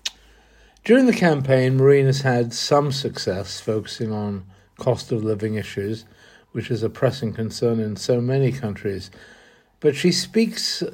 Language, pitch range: English, 115-145 Hz